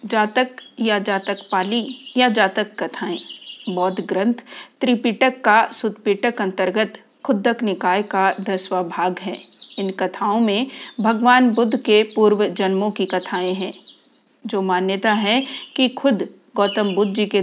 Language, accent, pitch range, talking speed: Hindi, native, 190-235 Hz, 135 wpm